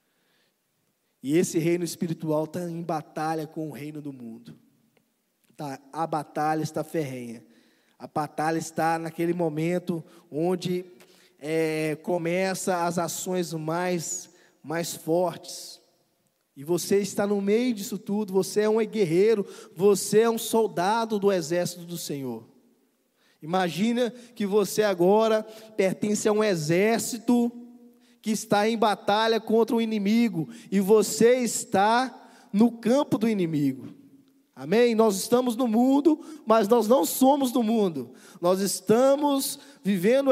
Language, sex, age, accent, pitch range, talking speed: Portuguese, male, 20-39, Brazilian, 175-235 Hz, 125 wpm